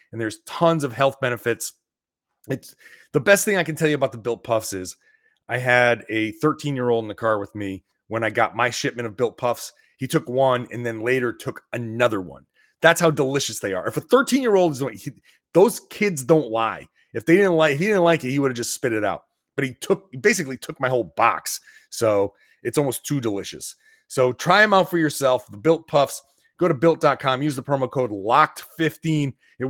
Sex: male